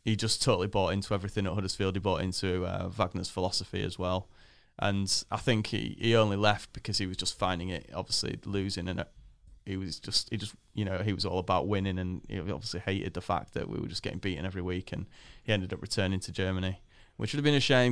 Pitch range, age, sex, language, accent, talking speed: 95-120 Hz, 20-39, male, English, British, 240 wpm